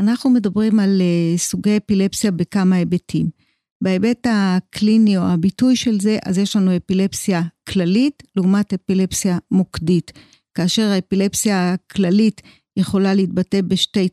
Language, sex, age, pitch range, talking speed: Hebrew, female, 50-69, 185-215 Hz, 115 wpm